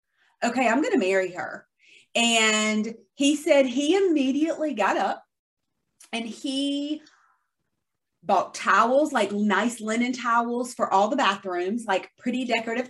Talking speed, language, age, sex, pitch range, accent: 130 wpm, English, 30-49, female, 215-270 Hz, American